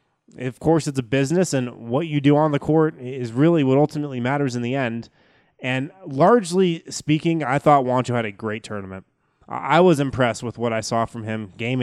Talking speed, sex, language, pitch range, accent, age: 205 wpm, male, English, 115-145 Hz, American, 20-39